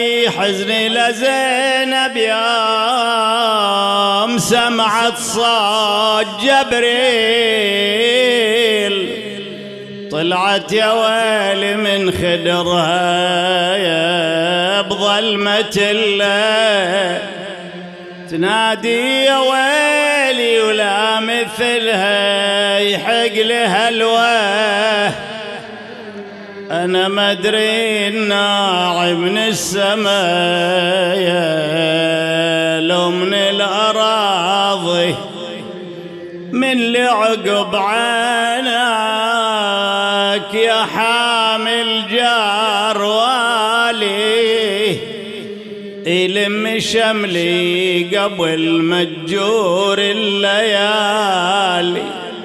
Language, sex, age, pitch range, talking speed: English, male, 40-59, 195-225 Hz, 40 wpm